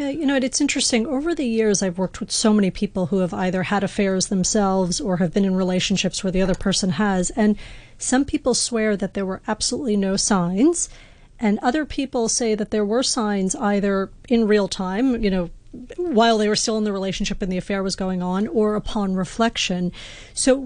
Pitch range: 195-240 Hz